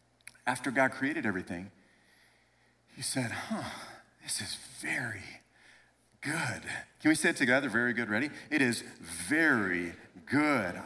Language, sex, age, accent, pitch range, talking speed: English, male, 40-59, American, 115-195 Hz, 125 wpm